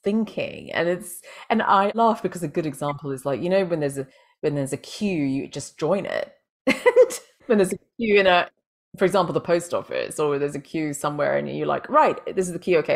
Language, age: English, 30-49